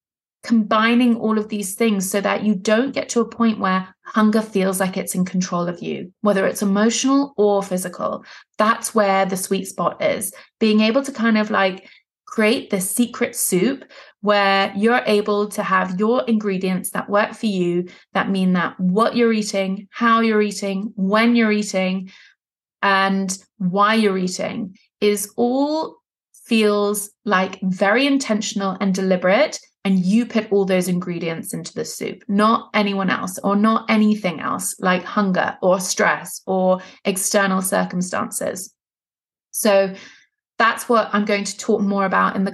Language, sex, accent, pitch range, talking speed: English, female, British, 195-225 Hz, 160 wpm